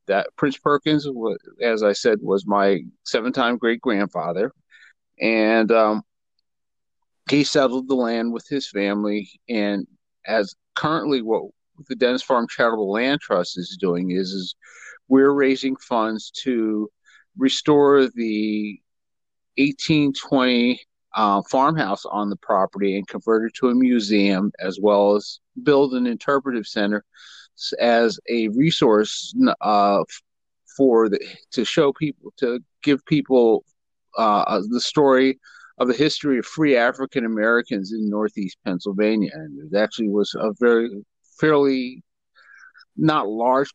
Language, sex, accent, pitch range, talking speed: English, male, American, 105-140 Hz, 125 wpm